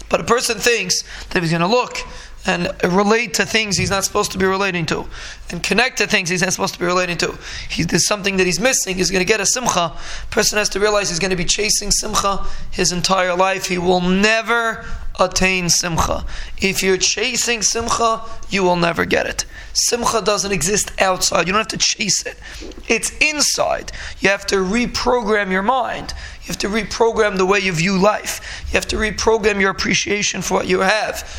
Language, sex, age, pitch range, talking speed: English, male, 20-39, 185-220 Hz, 205 wpm